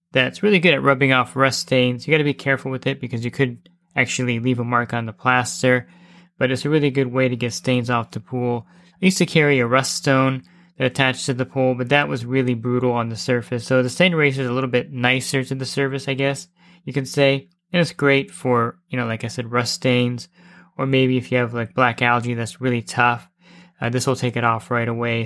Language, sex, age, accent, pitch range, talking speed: English, male, 20-39, American, 120-140 Hz, 245 wpm